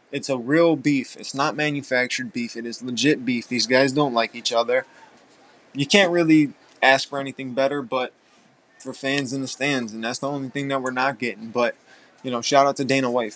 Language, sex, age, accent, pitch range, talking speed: English, male, 20-39, American, 120-145 Hz, 215 wpm